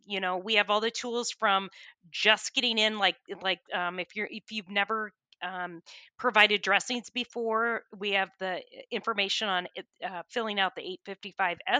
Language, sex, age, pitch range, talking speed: English, female, 30-49, 185-230 Hz, 170 wpm